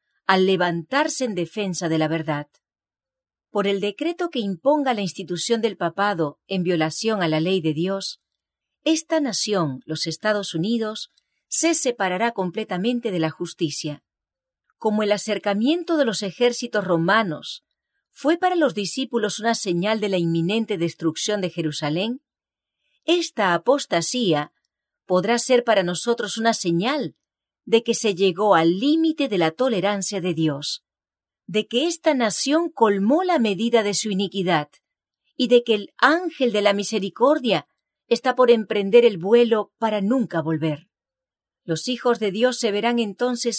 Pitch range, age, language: 180-245 Hz, 40-59, English